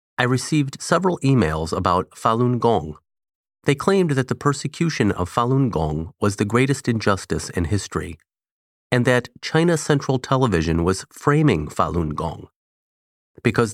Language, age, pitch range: English, 30-49, 85-130 Hz